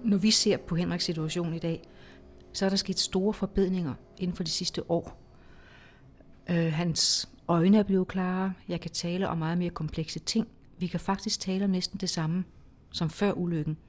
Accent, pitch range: native, 165-195 Hz